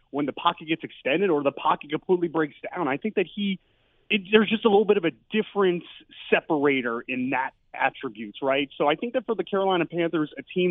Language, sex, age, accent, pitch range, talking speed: English, male, 30-49, American, 145-195 Hz, 220 wpm